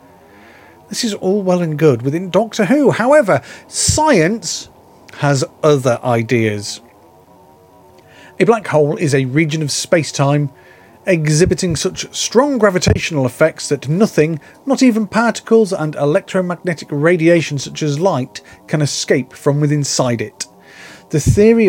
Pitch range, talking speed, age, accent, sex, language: 145-195 Hz, 125 wpm, 30-49, British, male, English